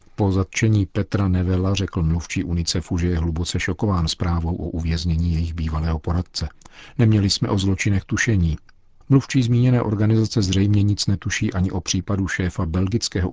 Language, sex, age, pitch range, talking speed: Czech, male, 50-69, 85-100 Hz, 150 wpm